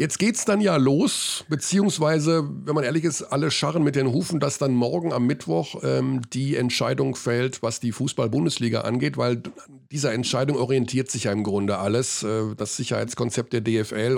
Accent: German